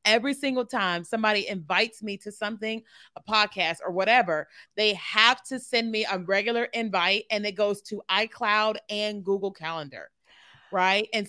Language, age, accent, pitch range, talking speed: English, 30-49, American, 195-235 Hz, 160 wpm